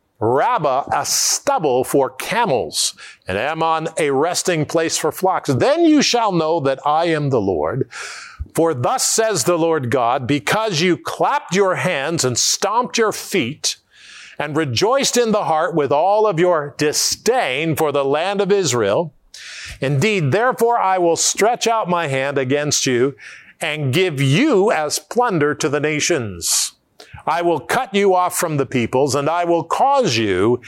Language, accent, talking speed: English, American, 160 wpm